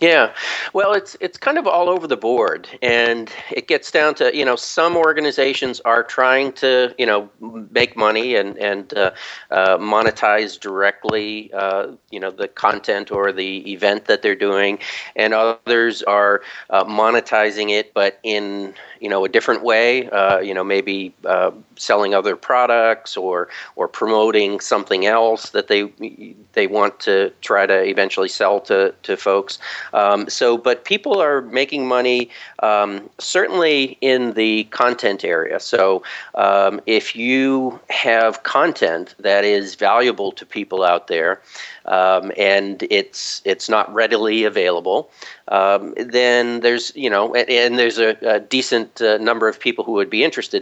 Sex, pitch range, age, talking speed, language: male, 100-125 Hz, 40-59, 160 wpm, English